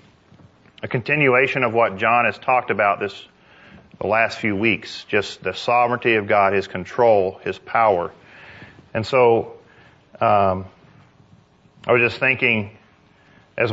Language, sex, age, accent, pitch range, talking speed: English, male, 40-59, American, 100-125 Hz, 130 wpm